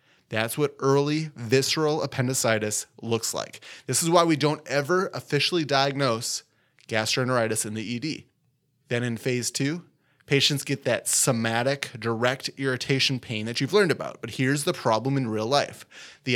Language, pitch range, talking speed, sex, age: English, 115-145 Hz, 155 wpm, male, 20-39